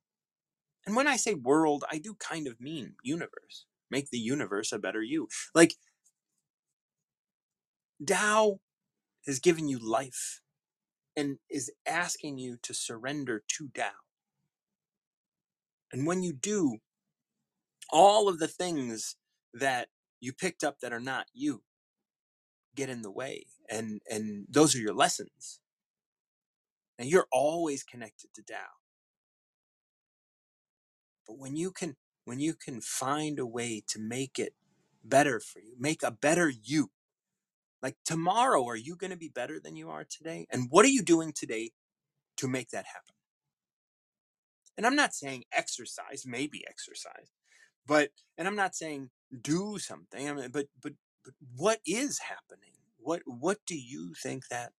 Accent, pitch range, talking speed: American, 125-180 Hz, 145 wpm